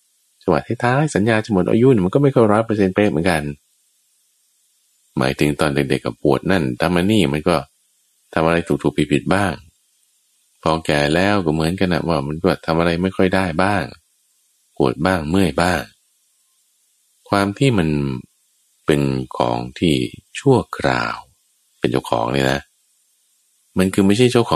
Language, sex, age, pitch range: Thai, male, 20-39, 75-110 Hz